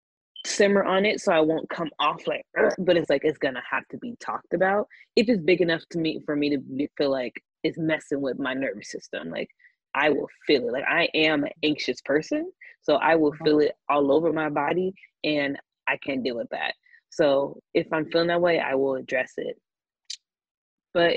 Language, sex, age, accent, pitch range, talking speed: English, female, 20-39, American, 145-180 Hz, 205 wpm